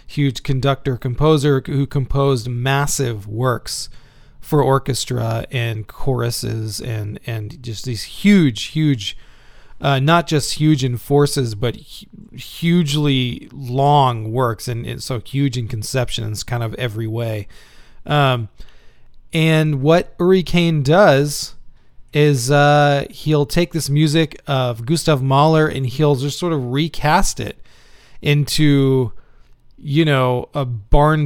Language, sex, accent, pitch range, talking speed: English, male, American, 120-150 Hz, 125 wpm